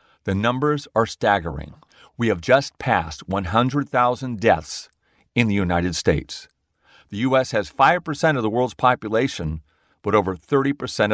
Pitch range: 95-140 Hz